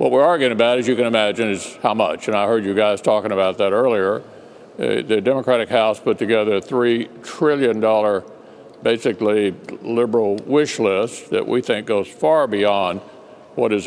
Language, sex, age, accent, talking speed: English, male, 60-79, American, 175 wpm